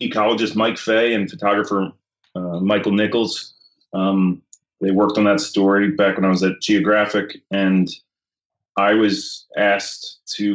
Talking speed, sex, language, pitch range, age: 140 wpm, male, English, 95-105 Hz, 30-49